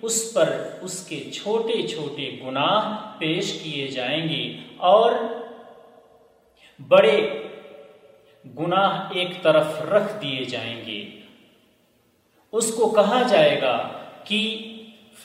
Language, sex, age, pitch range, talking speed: Urdu, male, 40-59, 140-205 Hz, 100 wpm